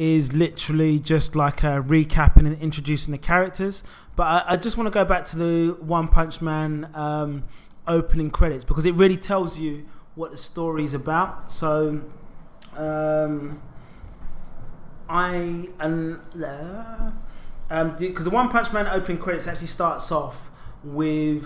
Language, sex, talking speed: English, male, 145 wpm